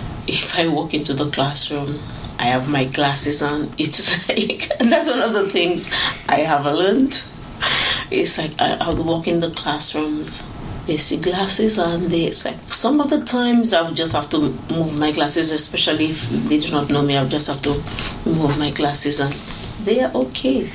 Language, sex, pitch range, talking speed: English, female, 135-170 Hz, 190 wpm